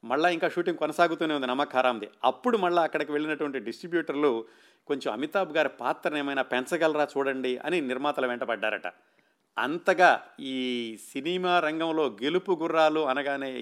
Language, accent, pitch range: Telugu, native, 135-170 Hz